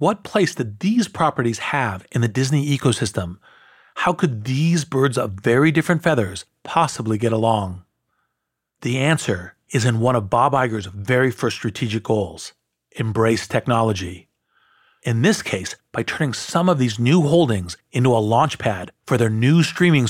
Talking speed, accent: 160 wpm, American